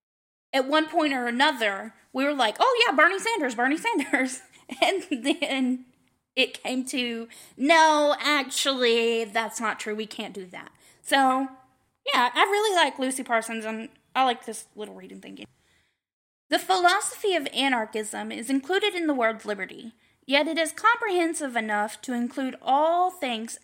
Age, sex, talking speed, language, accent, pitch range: 10-29, female, 155 wpm, English, American, 230-310 Hz